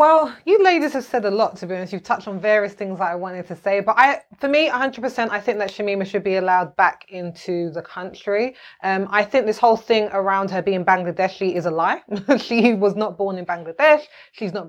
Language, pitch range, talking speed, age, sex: English, 195-235 Hz, 235 wpm, 20-39, female